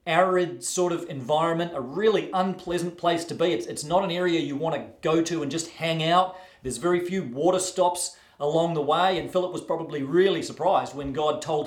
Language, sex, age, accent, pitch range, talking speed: English, male, 40-59, Australian, 155-200 Hz, 210 wpm